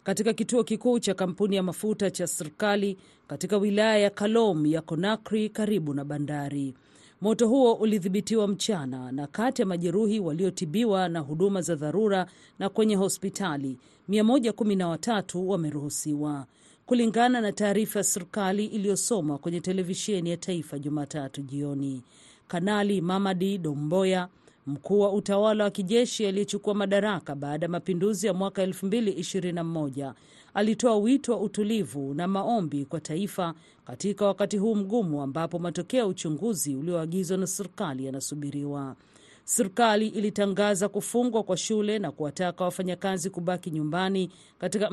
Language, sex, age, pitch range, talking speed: Swahili, female, 40-59, 160-210 Hz, 125 wpm